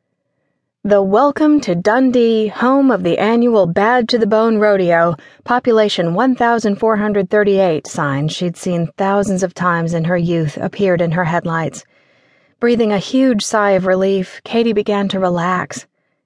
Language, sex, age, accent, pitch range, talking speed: English, female, 30-49, American, 180-220 Hz, 140 wpm